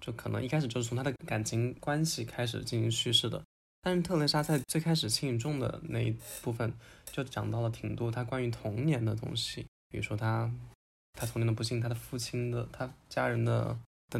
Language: Chinese